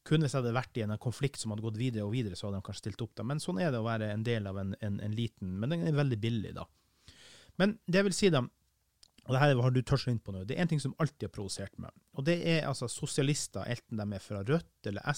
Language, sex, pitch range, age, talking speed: English, male, 110-145 Hz, 30-49, 310 wpm